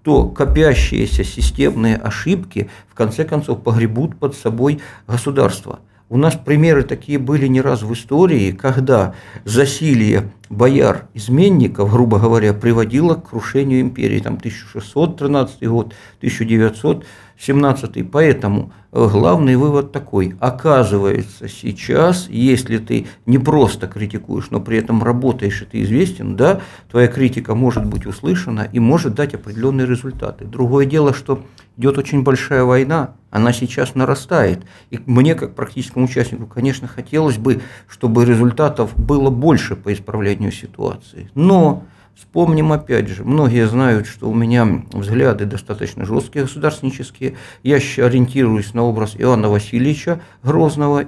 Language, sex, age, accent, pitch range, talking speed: Russian, male, 50-69, native, 110-140 Hz, 125 wpm